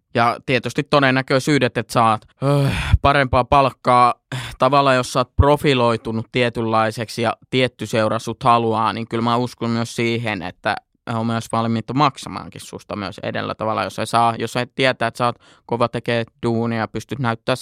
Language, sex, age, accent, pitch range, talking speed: Finnish, male, 20-39, native, 110-125 Hz, 150 wpm